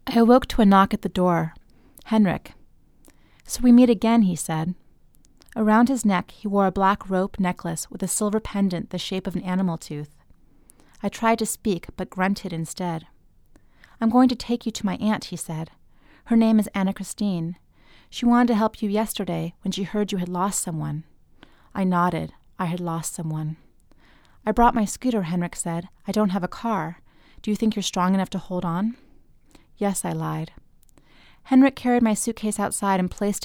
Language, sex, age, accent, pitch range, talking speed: English, female, 30-49, American, 180-220 Hz, 190 wpm